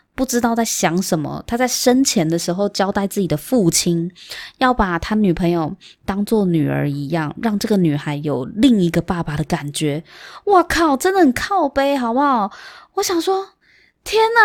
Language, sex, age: Chinese, female, 20-39